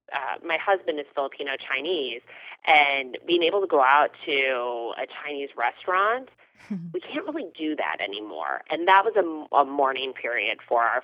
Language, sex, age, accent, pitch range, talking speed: English, female, 30-49, American, 130-185 Hz, 170 wpm